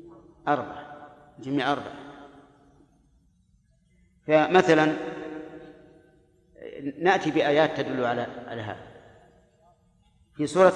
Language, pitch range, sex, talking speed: Arabic, 140-160 Hz, male, 60 wpm